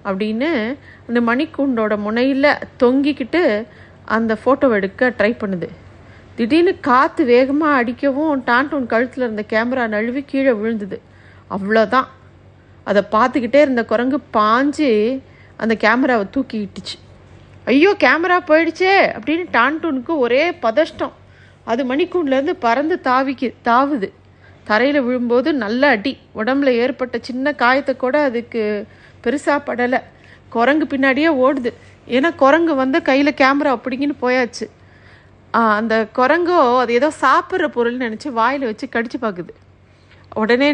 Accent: native